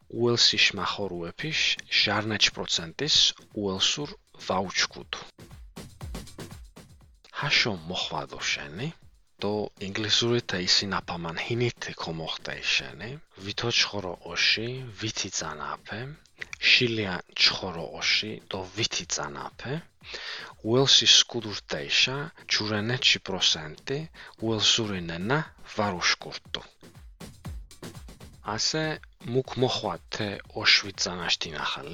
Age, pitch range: 40-59, 100-125 Hz